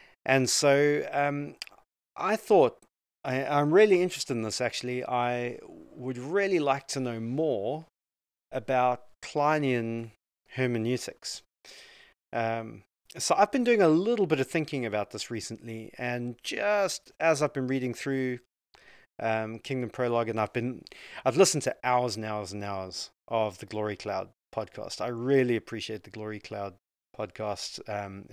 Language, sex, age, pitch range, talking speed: English, male, 30-49, 110-140 Hz, 145 wpm